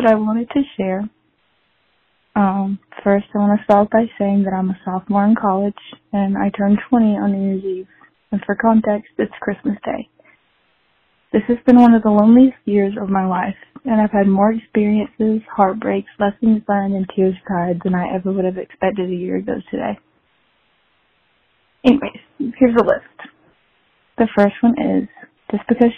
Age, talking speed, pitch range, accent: 20-39, 170 wpm, 195-225 Hz, American